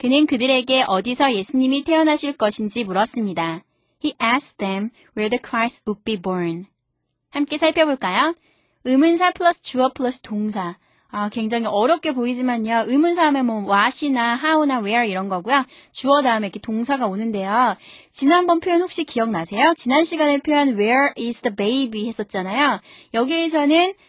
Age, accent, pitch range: 20-39, native, 210-280 Hz